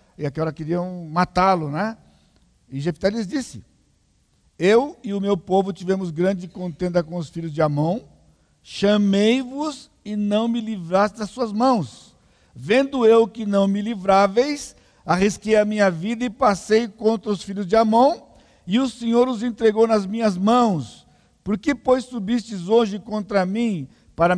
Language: Portuguese